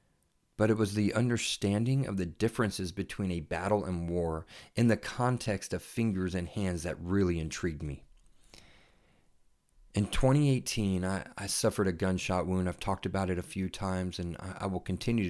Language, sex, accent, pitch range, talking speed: English, male, American, 90-110 Hz, 175 wpm